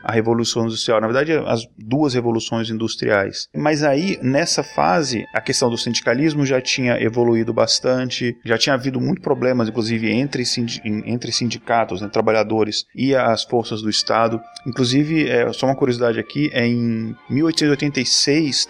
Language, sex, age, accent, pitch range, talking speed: Portuguese, male, 30-49, Brazilian, 110-130 Hz, 150 wpm